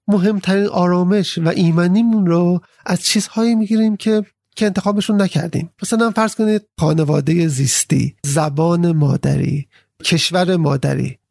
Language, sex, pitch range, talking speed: Persian, male, 160-205 Hz, 115 wpm